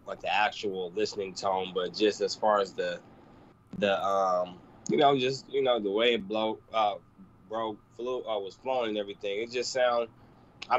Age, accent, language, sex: 20-39, American, English, male